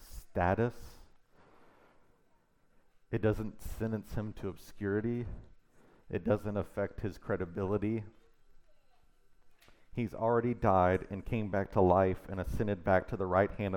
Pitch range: 95-120 Hz